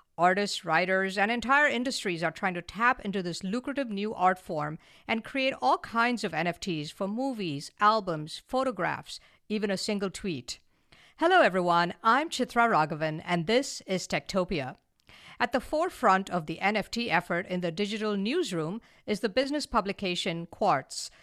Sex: female